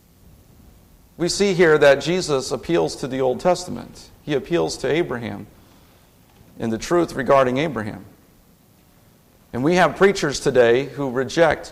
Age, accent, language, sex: 50-69, American, English, male